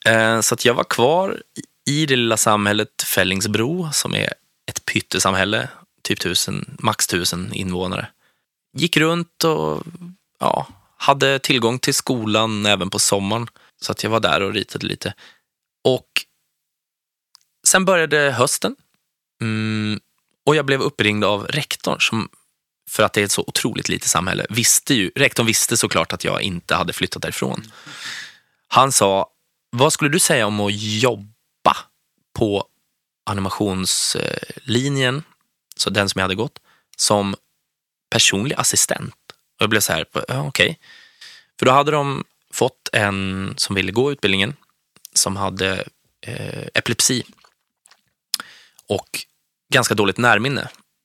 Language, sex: Swedish, male